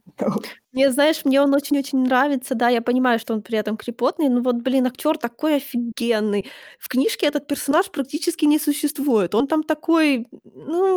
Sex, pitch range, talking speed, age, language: female, 225-275 Hz, 170 wpm, 20-39, Ukrainian